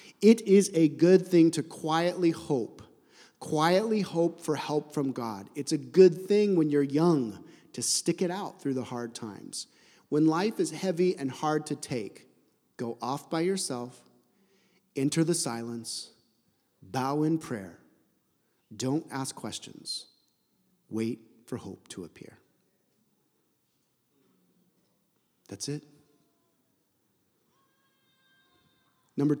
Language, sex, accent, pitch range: English, male, American, 130-175 Hz